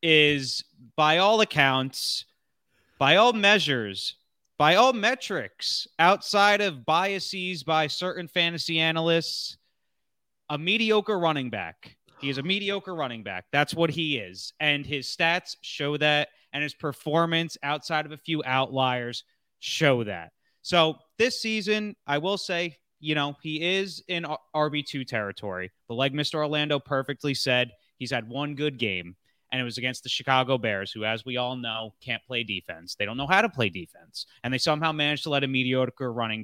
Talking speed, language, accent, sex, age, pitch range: 165 wpm, English, American, male, 30-49, 125-175 Hz